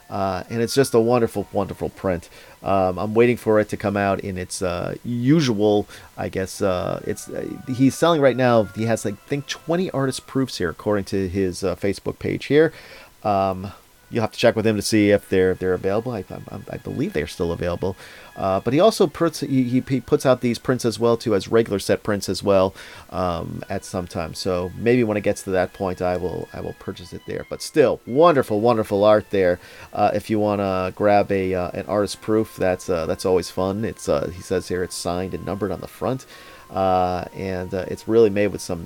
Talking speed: 225 wpm